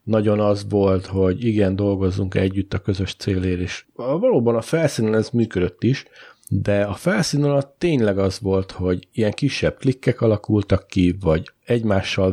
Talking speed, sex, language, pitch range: 155 wpm, male, Hungarian, 90-115 Hz